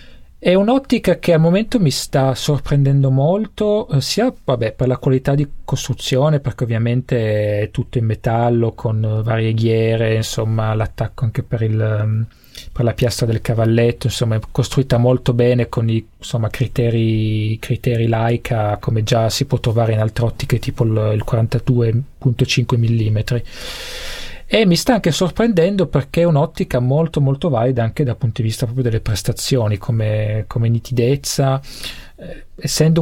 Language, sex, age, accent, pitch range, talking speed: English, male, 30-49, Italian, 115-135 Hz, 145 wpm